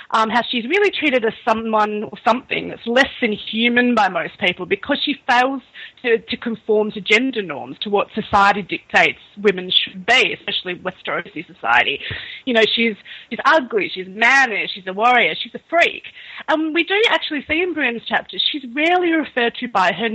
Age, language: 30-49, English